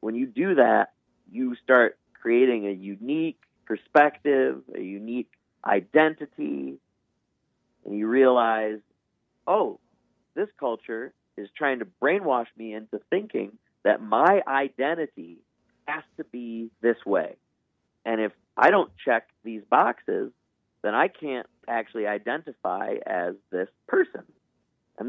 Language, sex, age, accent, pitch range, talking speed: English, male, 40-59, American, 100-150 Hz, 120 wpm